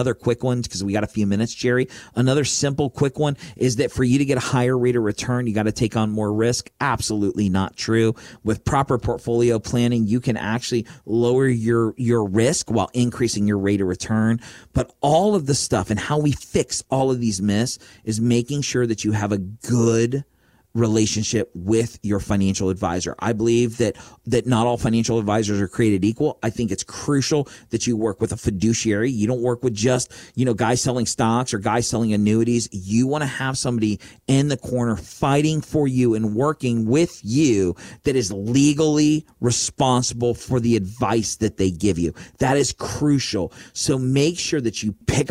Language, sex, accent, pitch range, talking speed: English, male, American, 110-130 Hz, 195 wpm